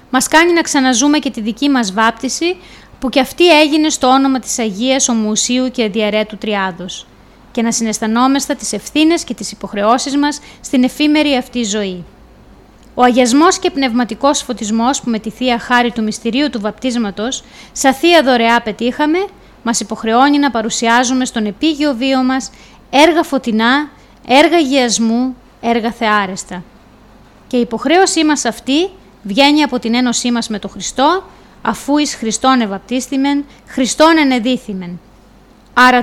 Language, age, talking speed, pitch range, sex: Greek, 20-39, 140 wpm, 225-285 Hz, female